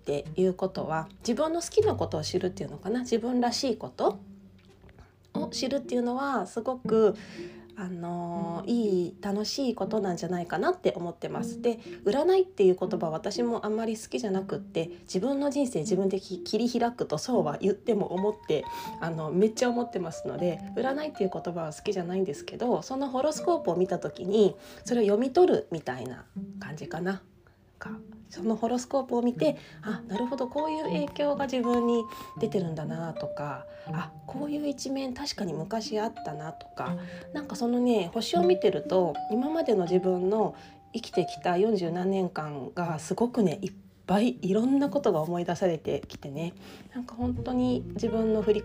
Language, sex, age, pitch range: Japanese, female, 20-39, 175-235 Hz